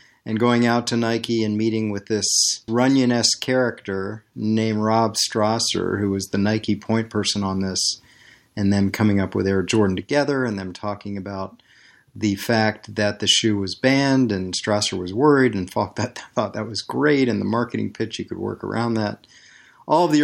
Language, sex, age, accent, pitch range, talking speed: English, male, 40-59, American, 100-120 Hz, 190 wpm